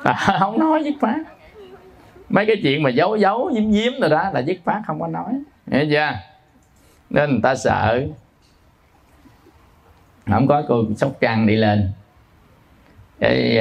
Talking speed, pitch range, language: 155 wpm, 105-165 Hz, Vietnamese